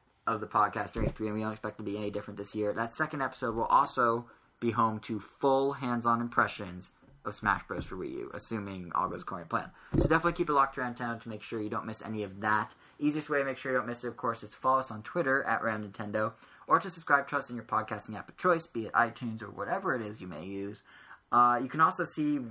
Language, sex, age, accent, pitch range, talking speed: English, male, 10-29, American, 105-130 Hz, 265 wpm